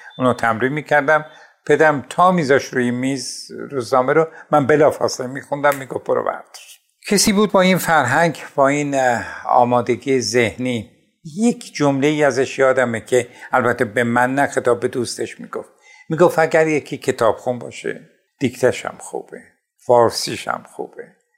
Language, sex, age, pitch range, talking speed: Persian, male, 60-79, 120-150 Hz, 145 wpm